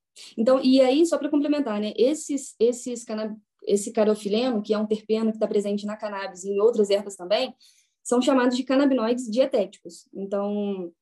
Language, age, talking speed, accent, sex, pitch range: Portuguese, 10-29, 175 wpm, Brazilian, female, 220-285 Hz